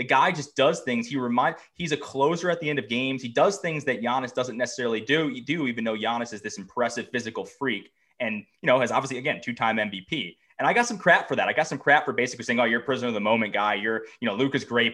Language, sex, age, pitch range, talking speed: English, male, 20-39, 120-165 Hz, 280 wpm